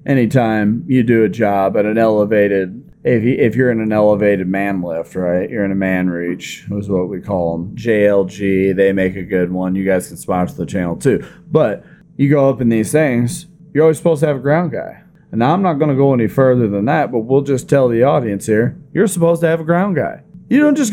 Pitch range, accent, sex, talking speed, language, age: 100-155 Hz, American, male, 245 wpm, English, 30-49